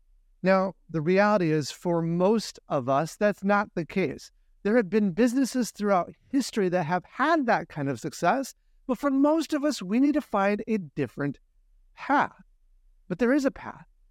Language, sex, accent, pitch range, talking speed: English, male, American, 165-245 Hz, 180 wpm